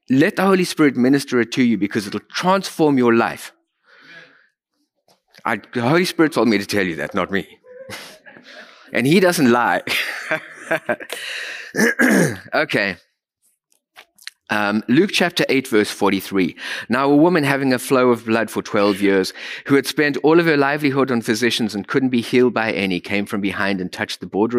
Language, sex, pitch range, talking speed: English, male, 105-150 Hz, 170 wpm